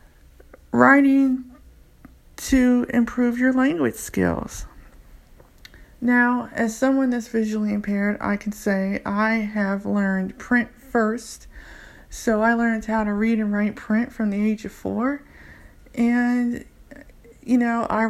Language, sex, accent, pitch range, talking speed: English, female, American, 215-240 Hz, 125 wpm